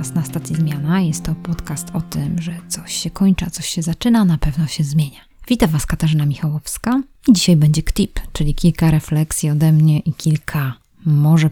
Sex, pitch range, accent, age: female, 150-180 Hz, native, 20-39